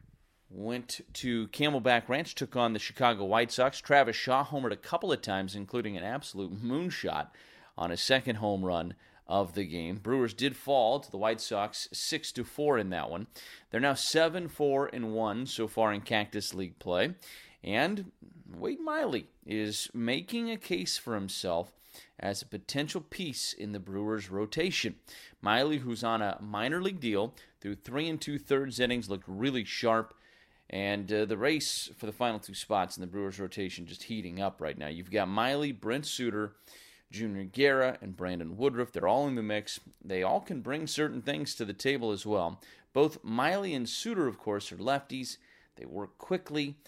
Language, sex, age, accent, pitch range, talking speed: English, male, 30-49, American, 100-135 Hz, 175 wpm